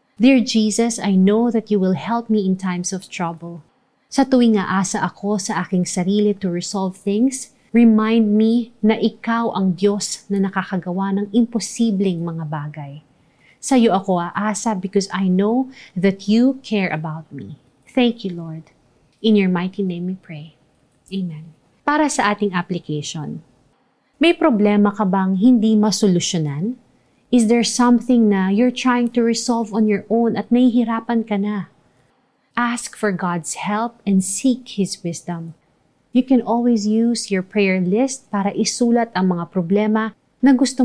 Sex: female